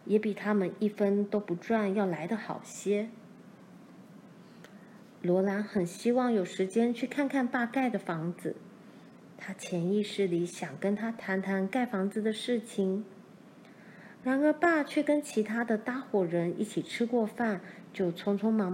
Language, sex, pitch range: Chinese, female, 190-235 Hz